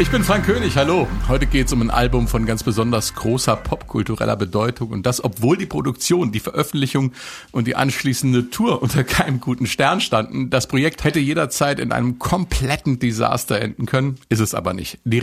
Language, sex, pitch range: German, male, 105-135 Hz